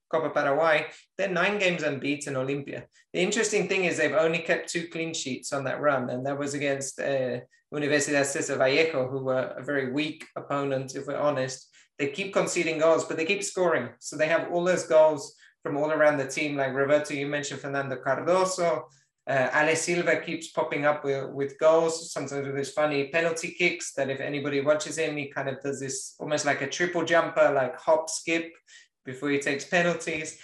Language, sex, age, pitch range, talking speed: English, male, 20-39, 140-165 Hz, 195 wpm